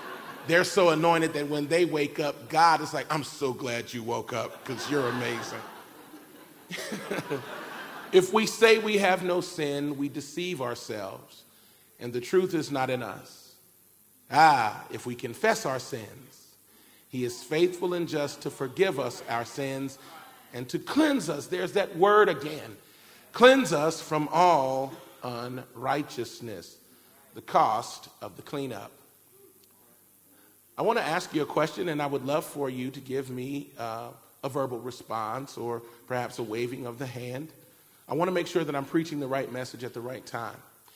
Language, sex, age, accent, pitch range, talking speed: English, male, 40-59, American, 130-180 Hz, 165 wpm